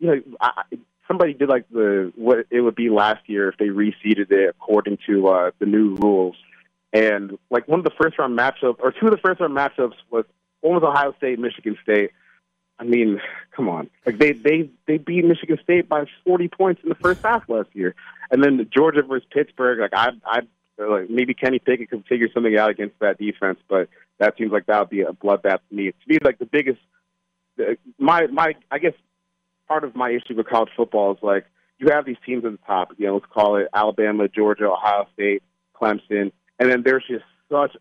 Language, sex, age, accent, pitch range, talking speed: English, male, 30-49, American, 105-130 Hz, 215 wpm